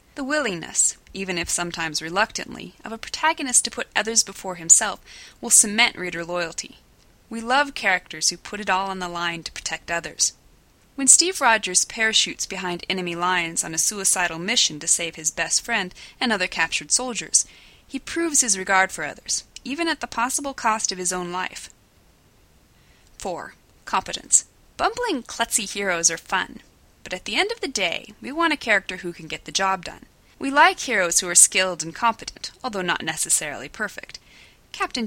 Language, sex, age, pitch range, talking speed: English, female, 20-39, 175-245 Hz, 175 wpm